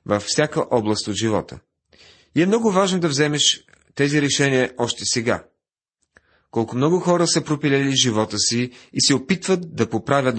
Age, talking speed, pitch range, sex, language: 40-59, 155 wpm, 100-140 Hz, male, Bulgarian